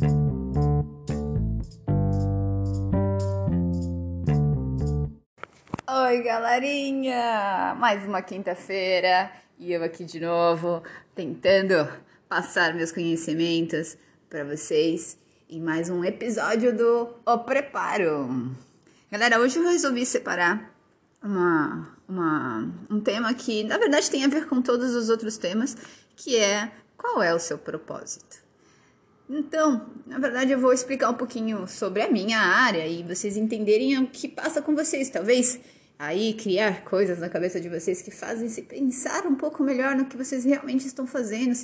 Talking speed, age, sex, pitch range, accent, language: 130 wpm, 20-39, female, 170-260 Hz, Brazilian, Portuguese